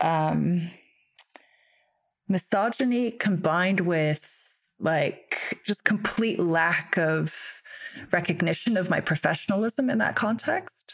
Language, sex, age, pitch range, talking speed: English, female, 30-49, 155-190 Hz, 90 wpm